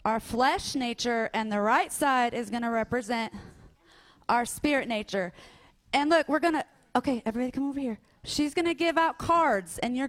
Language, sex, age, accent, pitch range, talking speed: English, female, 30-49, American, 230-305 Hz, 175 wpm